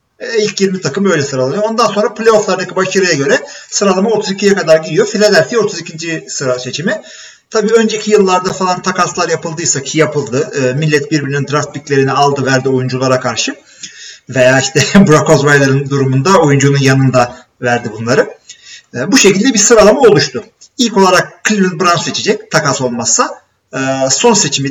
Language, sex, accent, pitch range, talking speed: Turkish, male, native, 135-200 Hz, 145 wpm